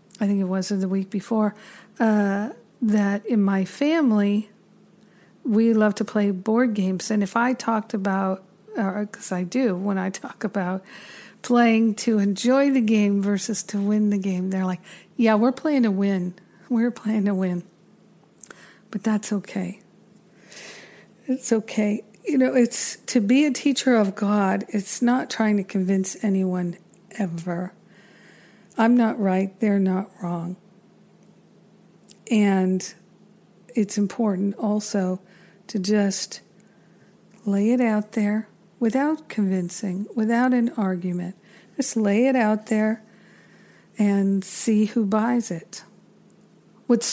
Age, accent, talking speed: 50-69, American, 135 wpm